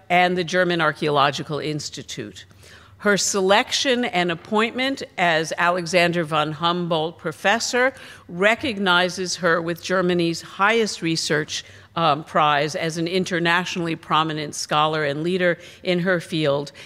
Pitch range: 150-190 Hz